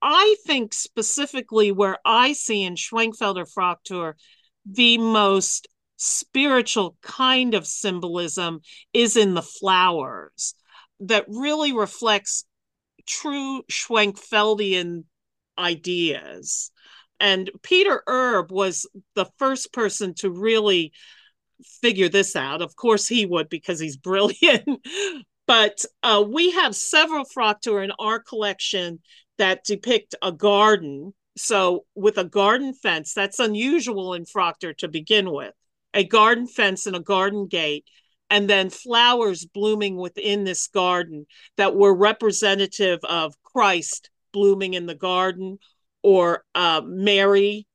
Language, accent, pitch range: English, American, 180-230 Hz